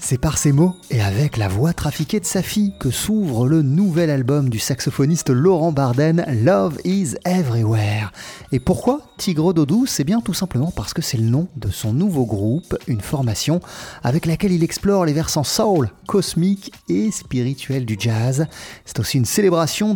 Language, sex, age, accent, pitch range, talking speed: French, male, 30-49, French, 130-190 Hz, 180 wpm